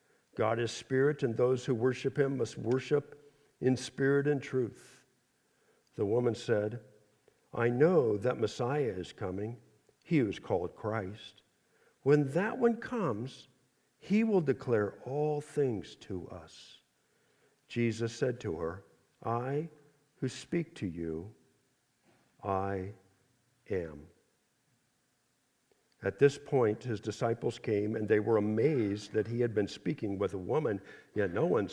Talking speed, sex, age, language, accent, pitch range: 135 wpm, male, 50-69, English, American, 110-180 Hz